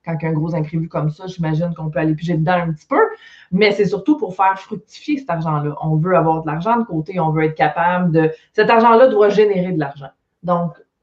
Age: 30-49